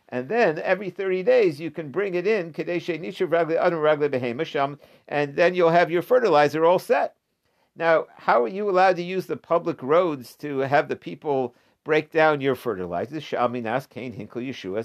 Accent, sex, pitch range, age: American, male, 120-170 Hz, 50-69